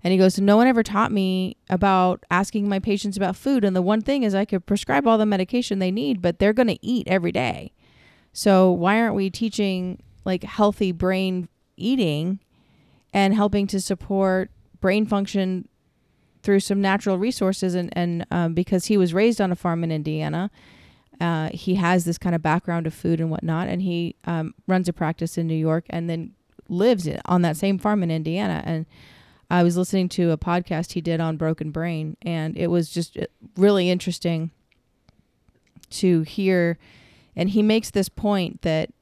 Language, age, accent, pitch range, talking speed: English, 30-49, American, 165-195 Hz, 185 wpm